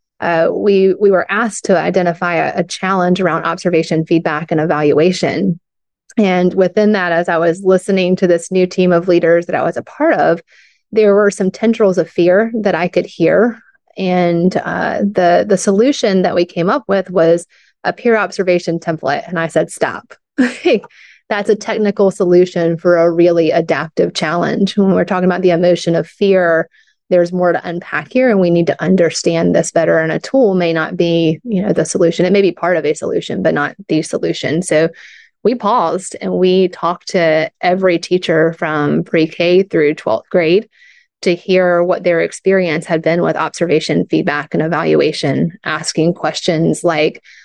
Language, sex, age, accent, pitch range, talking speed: English, female, 30-49, American, 170-200 Hz, 180 wpm